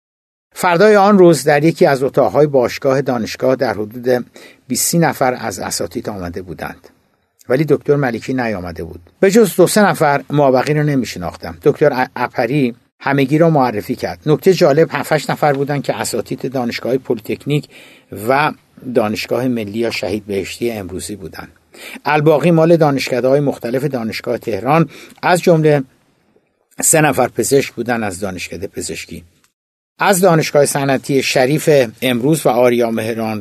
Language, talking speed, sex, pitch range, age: Persian, 140 wpm, male, 125-165 Hz, 60-79